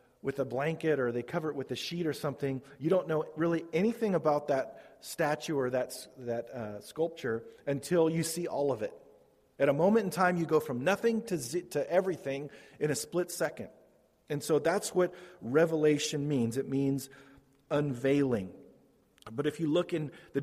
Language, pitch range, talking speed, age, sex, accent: English, 130-165 Hz, 185 wpm, 40-59, male, American